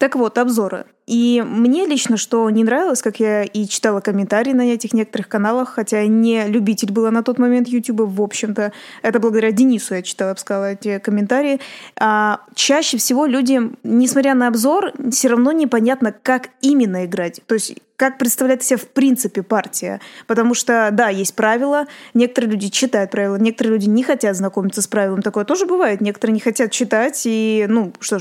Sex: female